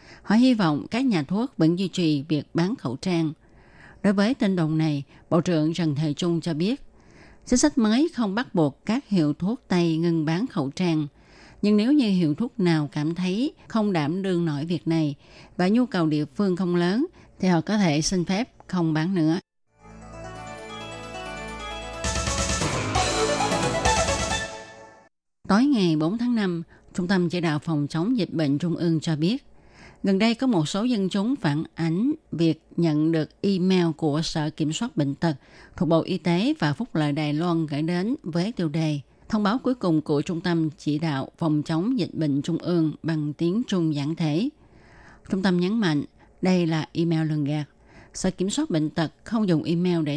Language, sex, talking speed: Vietnamese, female, 190 wpm